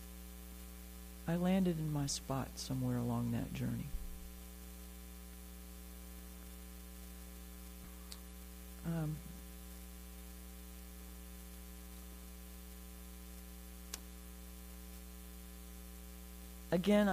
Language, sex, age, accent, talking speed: English, female, 60-79, American, 40 wpm